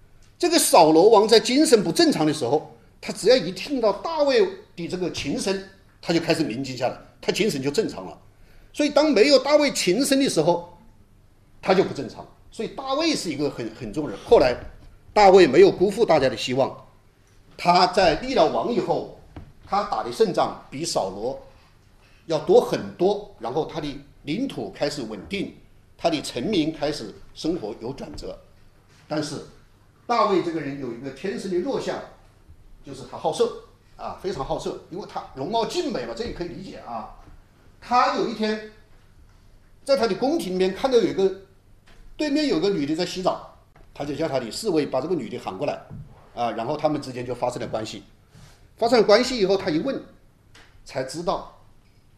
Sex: male